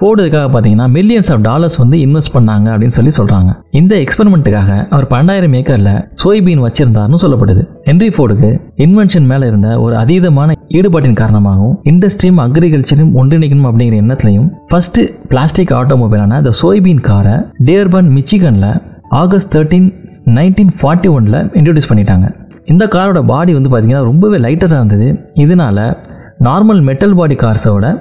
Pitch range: 125-180 Hz